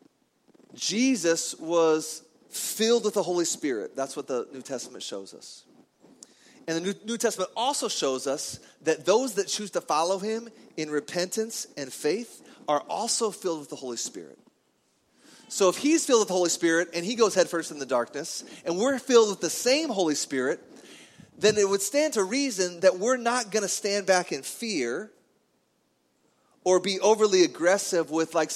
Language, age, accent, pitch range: English, 30-49, American, 140-215 Hz